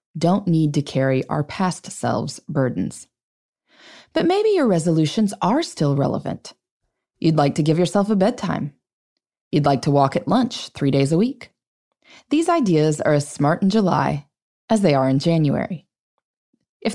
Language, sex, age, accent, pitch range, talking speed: English, female, 20-39, American, 140-225 Hz, 160 wpm